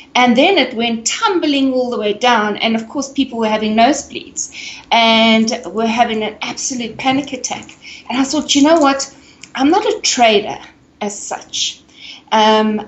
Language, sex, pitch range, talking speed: English, female, 220-285 Hz, 170 wpm